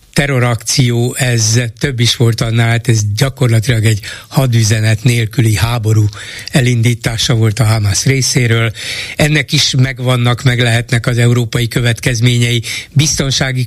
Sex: male